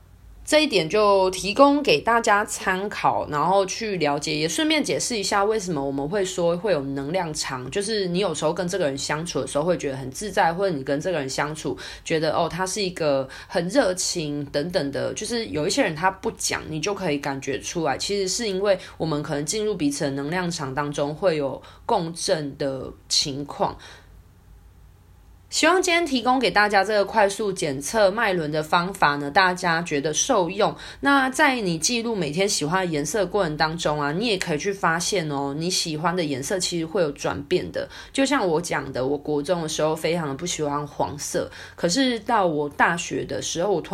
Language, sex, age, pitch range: Chinese, female, 20-39, 145-195 Hz